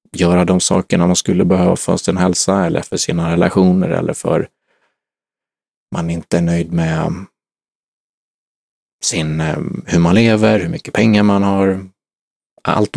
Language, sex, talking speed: Swedish, male, 145 wpm